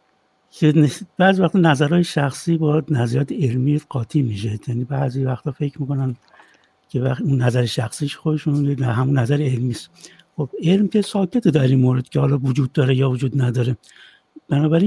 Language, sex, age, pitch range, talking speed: Persian, male, 60-79, 135-170 Hz, 155 wpm